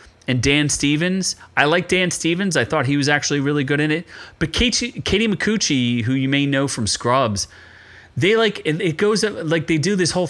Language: English